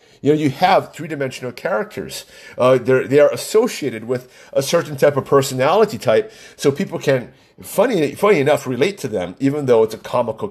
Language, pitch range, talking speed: English, 125-195 Hz, 185 wpm